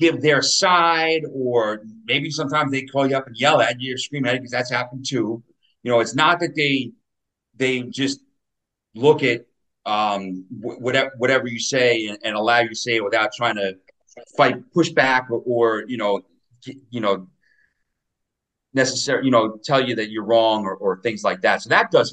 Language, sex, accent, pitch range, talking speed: English, male, American, 110-135 Hz, 195 wpm